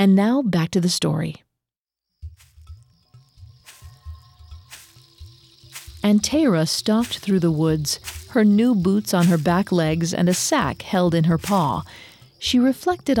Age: 40-59